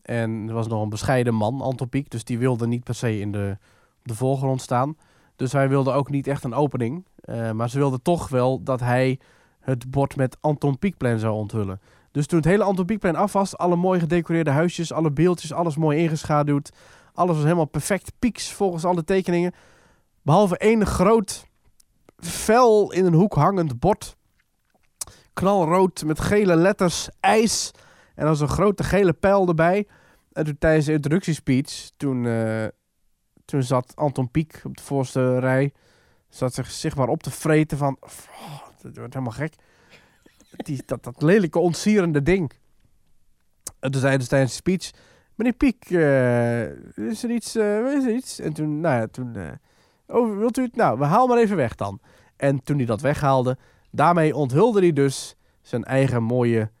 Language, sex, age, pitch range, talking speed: Dutch, male, 20-39, 125-175 Hz, 180 wpm